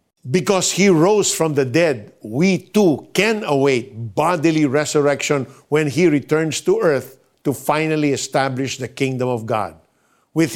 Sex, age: male, 50-69